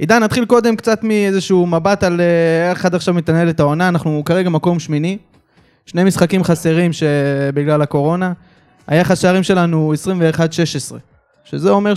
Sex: male